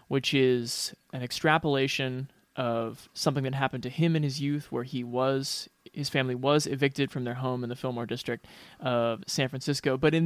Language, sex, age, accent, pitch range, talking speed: English, male, 20-39, American, 135-165 Hz, 185 wpm